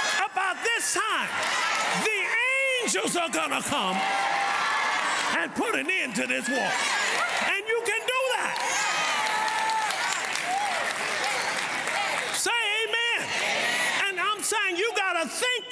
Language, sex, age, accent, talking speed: English, male, 40-59, American, 110 wpm